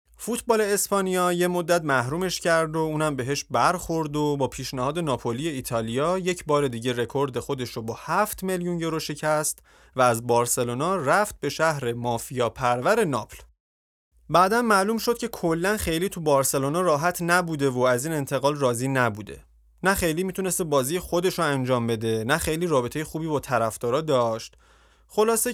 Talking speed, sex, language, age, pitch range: 155 wpm, male, Persian, 30-49, 125-175 Hz